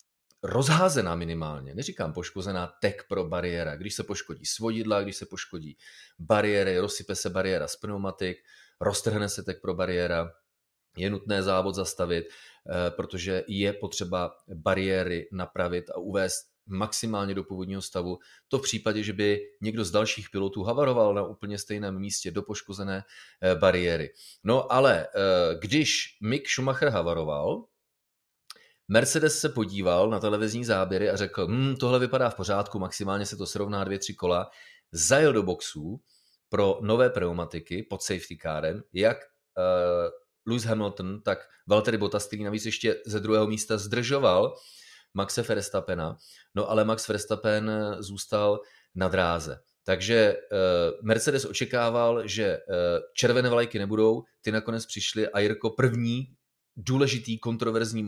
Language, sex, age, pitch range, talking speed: Czech, male, 30-49, 95-115 Hz, 135 wpm